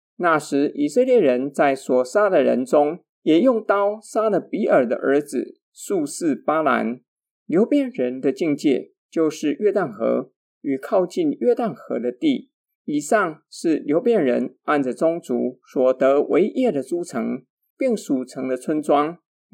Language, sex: Chinese, male